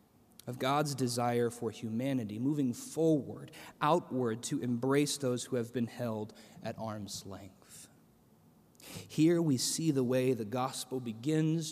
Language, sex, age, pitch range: English, male, 30-49, 115-140 Hz